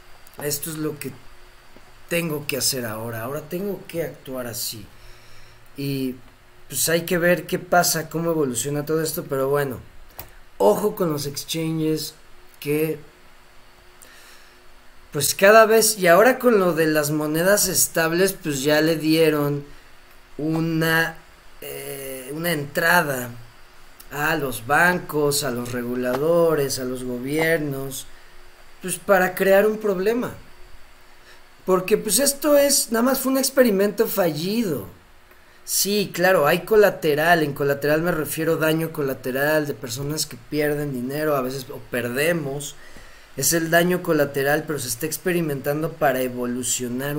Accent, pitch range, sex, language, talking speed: Mexican, 130-175 Hz, male, Spanish, 130 wpm